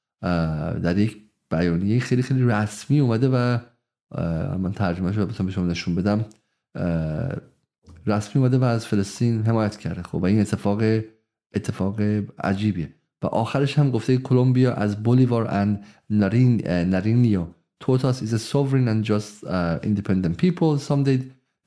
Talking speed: 115 wpm